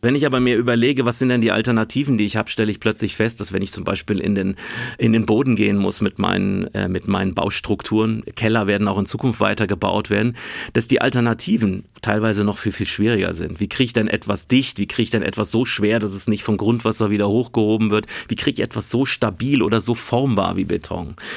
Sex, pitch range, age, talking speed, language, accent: male, 105-120 Hz, 30-49, 235 wpm, German, German